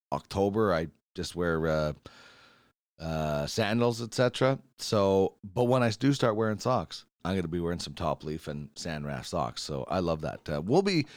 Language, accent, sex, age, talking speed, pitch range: English, American, male, 40-59, 190 wpm, 85-130 Hz